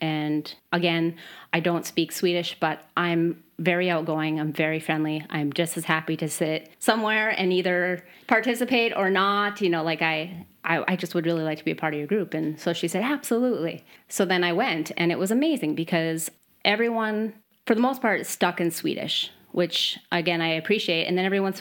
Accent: American